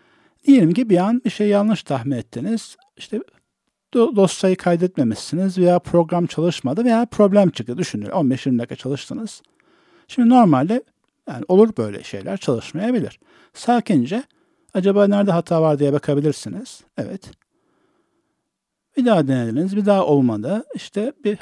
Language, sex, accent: Turkish, male, native